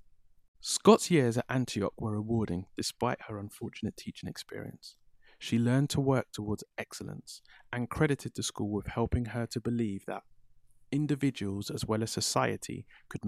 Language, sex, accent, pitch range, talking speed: English, male, British, 100-120 Hz, 150 wpm